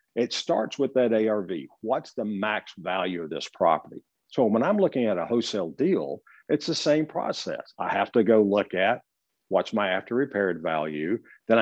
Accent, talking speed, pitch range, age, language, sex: American, 185 wpm, 100-120 Hz, 50-69, English, male